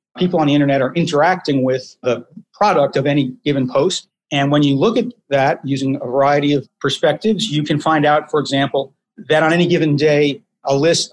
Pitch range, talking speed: 130-160 Hz, 200 wpm